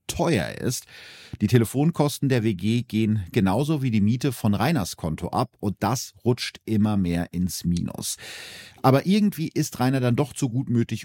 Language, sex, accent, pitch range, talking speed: German, male, German, 100-130 Hz, 165 wpm